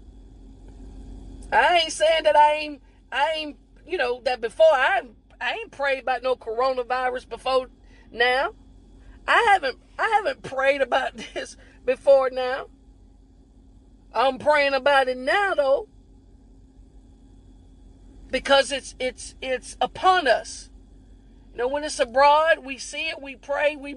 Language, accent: English, American